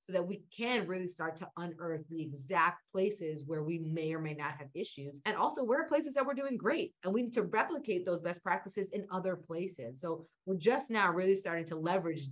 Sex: female